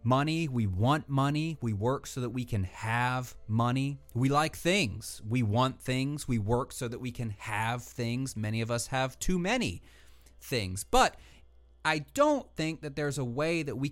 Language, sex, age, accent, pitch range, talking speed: English, male, 30-49, American, 100-140 Hz, 185 wpm